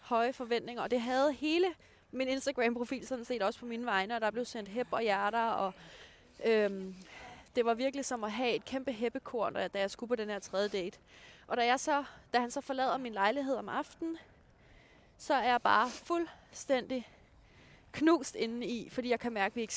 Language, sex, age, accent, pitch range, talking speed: Danish, female, 20-39, native, 210-270 Hz, 205 wpm